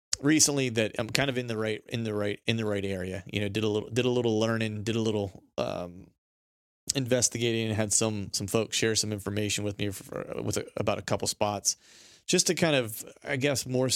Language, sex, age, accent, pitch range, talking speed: English, male, 30-49, American, 105-120 Hz, 230 wpm